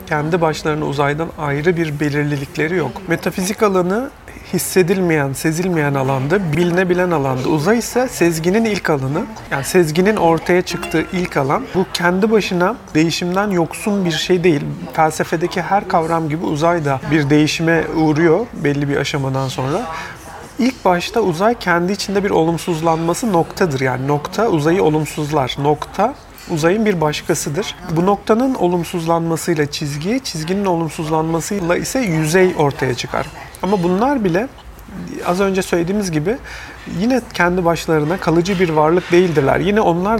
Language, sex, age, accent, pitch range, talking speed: Turkish, male, 40-59, native, 155-185 Hz, 130 wpm